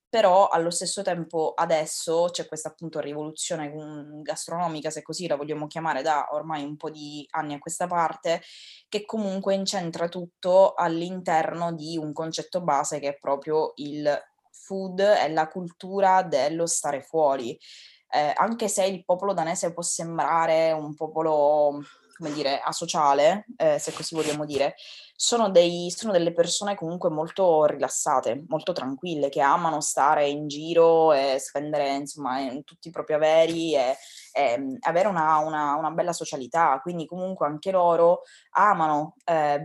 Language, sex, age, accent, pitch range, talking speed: Italian, female, 20-39, native, 150-175 Hz, 150 wpm